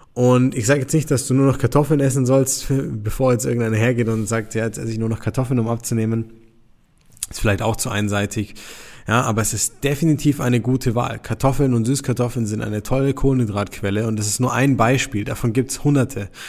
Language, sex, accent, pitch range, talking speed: German, male, German, 110-135 Hz, 210 wpm